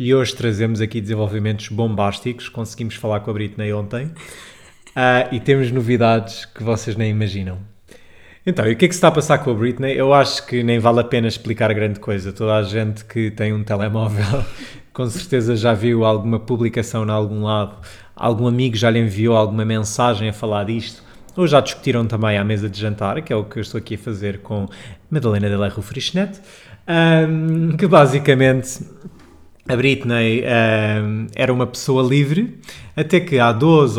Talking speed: 185 wpm